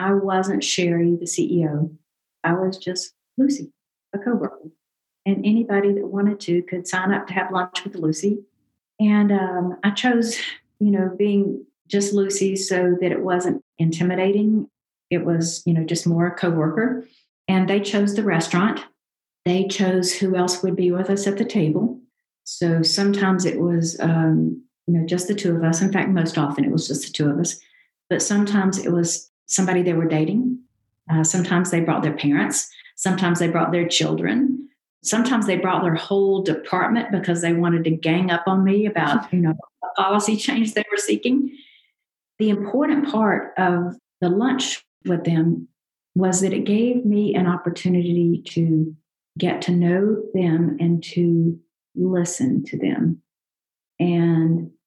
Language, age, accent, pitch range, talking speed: English, 50-69, American, 170-200 Hz, 165 wpm